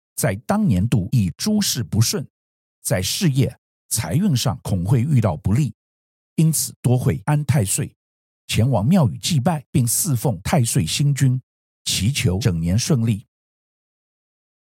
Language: Chinese